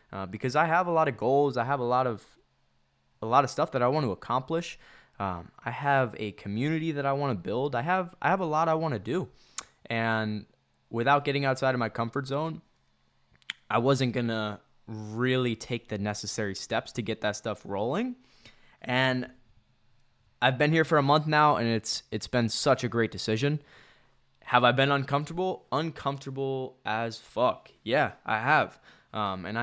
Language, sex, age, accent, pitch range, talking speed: English, male, 20-39, American, 110-140 Hz, 185 wpm